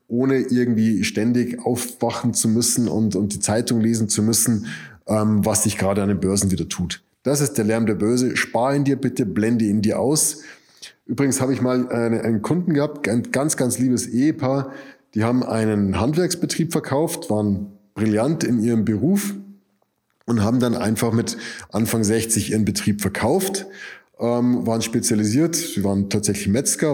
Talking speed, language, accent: 165 wpm, German, German